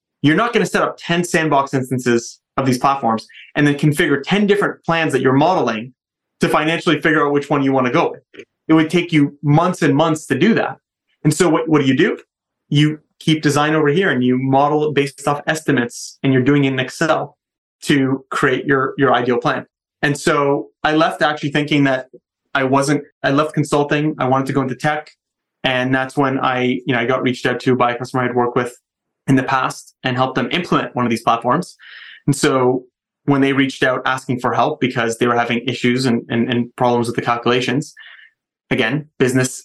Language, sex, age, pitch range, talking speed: English, male, 20-39, 130-150 Hz, 215 wpm